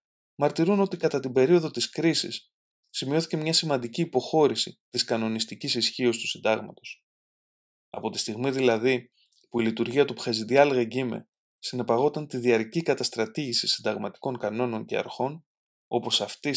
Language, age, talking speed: Greek, 20-39, 130 wpm